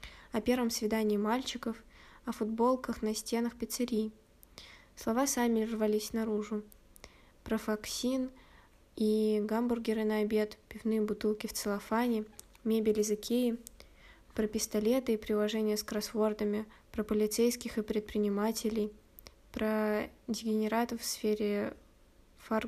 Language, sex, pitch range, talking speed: Russian, female, 210-235 Hz, 110 wpm